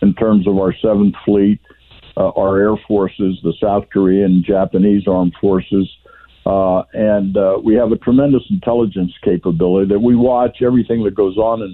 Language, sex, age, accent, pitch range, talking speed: English, male, 60-79, American, 95-110 Hz, 175 wpm